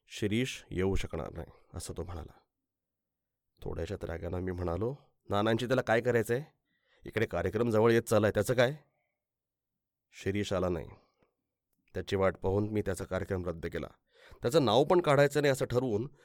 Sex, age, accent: male, 30-49, native